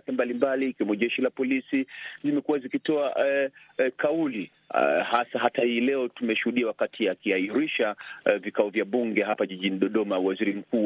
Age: 40-59